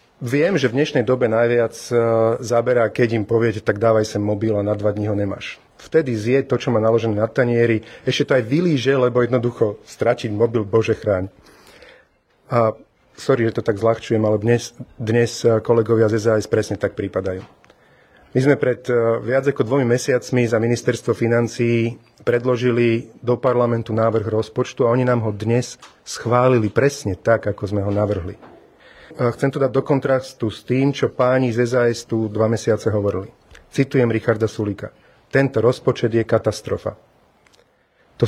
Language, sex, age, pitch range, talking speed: Slovak, male, 40-59, 110-125 Hz, 160 wpm